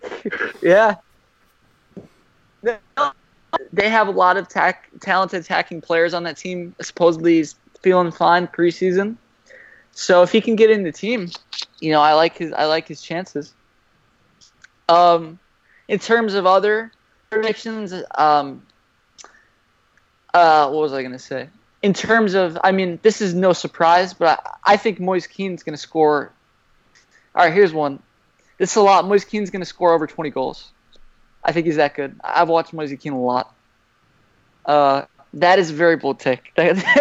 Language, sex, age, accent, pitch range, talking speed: English, male, 20-39, American, 160-205 Hz, 160 wpm